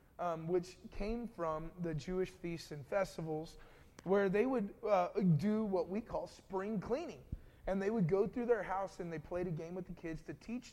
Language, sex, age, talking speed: English, male, 20-39, 200 wpm